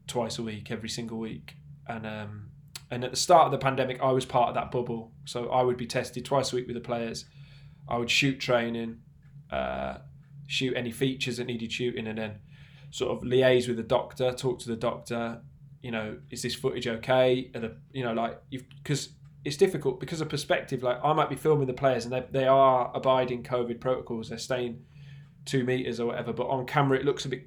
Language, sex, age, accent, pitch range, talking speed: English, male, 20-39, British, 115-140 Hz, 215 wpm